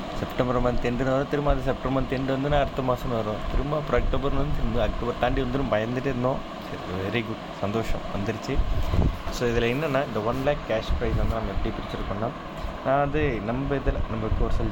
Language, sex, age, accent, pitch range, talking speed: Tamil, male, 20-39, native, 105-125 Hz, 185 wpm